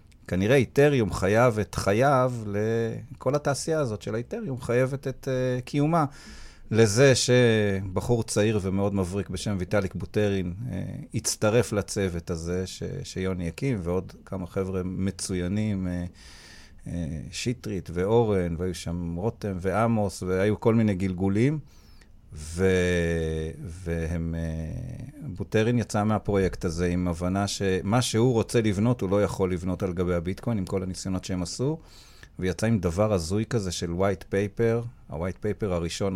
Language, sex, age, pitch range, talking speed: Hebrew, male, 40-59, 90-115 Hz, 135 wpm